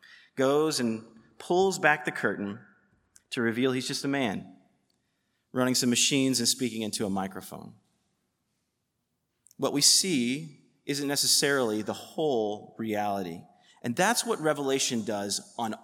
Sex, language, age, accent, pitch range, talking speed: male, English, 30-49, American, 125-160 Hz, 130 wpm